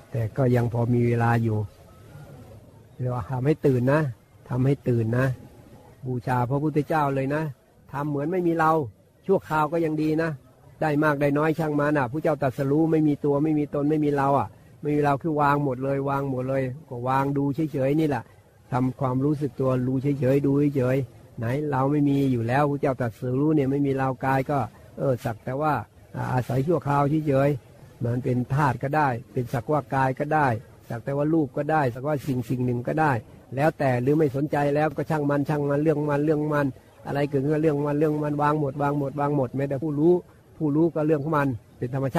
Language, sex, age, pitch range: Thai, male, 60-79, 130-150 Hz